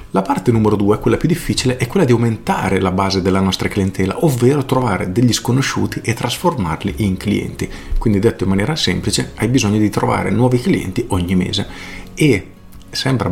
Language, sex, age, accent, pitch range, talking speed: Italian, male, 40-59, native, 95-125 Hz, 175 wpm